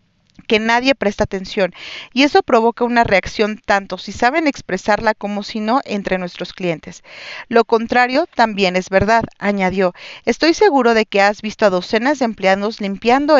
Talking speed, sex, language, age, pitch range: 160 wpm, female, Spanish, 40-59, 195-240 Hz